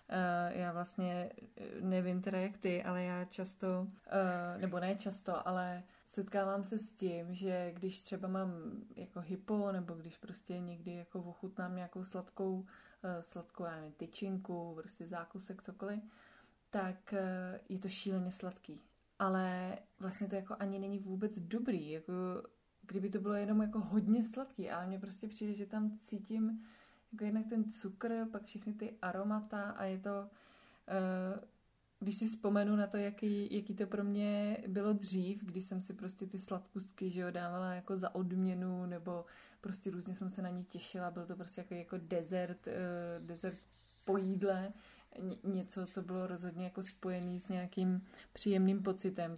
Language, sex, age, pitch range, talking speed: Czech, female, 20-39, 180-205 Hz, 155 wpm